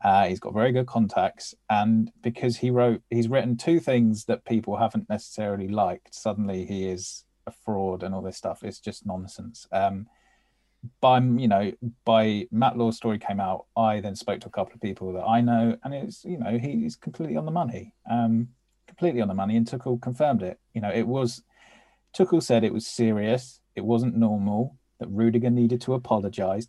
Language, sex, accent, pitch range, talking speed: English, male, British, 105-120 Hz, 195 wpm